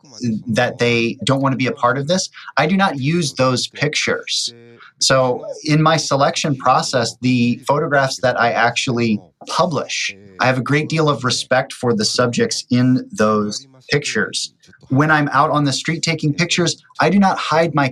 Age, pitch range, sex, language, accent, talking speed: 30-49, 120-155 Hz, male, English, American, 180 wpm